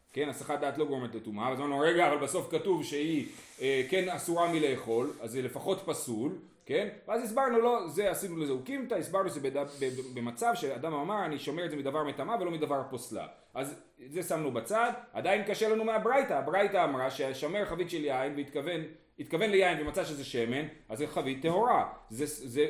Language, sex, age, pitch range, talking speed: Hebrew, male, 30-49, 140-205 Hz, 185 wpm